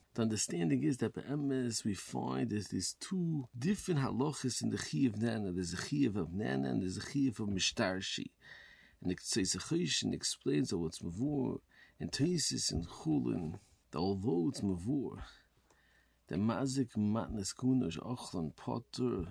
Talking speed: 160 wpm